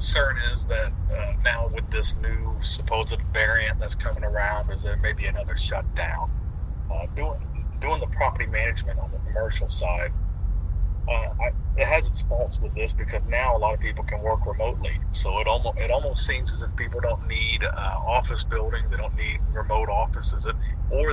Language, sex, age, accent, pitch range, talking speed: English, male, 40-59, American, 85-95 Hz, 185 wpm